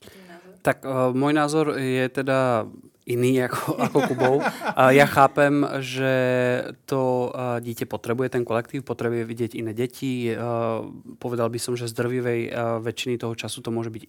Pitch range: 125-140 Hz